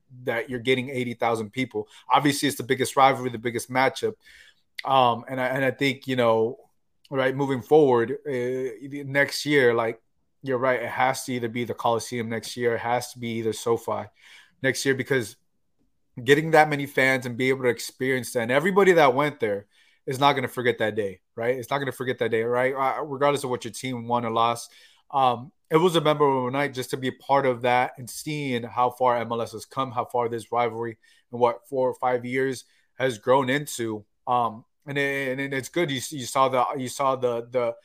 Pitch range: 120-140 Hz